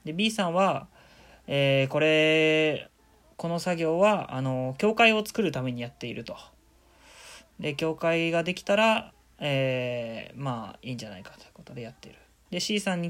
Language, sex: Japanese, male